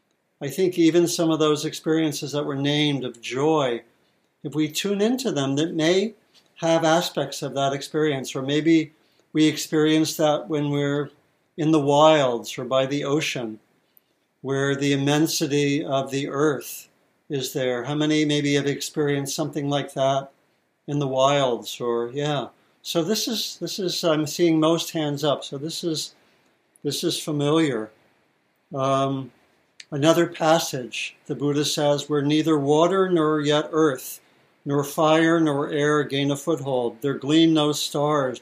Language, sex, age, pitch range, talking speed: English, male, 60-79, 140-155 Hz, 155 wpm